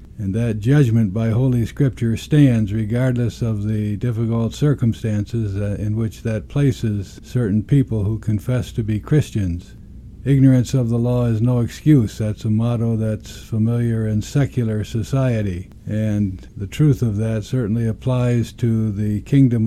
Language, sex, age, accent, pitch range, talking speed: English, male, 60-79, American, 105-125 Hz, 145 wpm